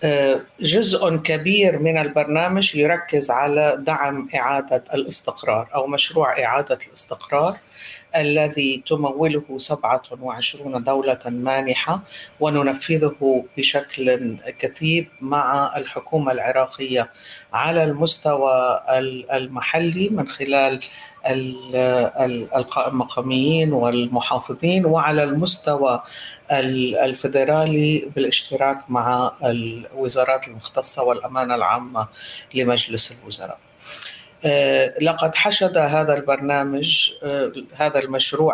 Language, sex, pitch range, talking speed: Arabic, female, 130-155 Hz, 75 wpm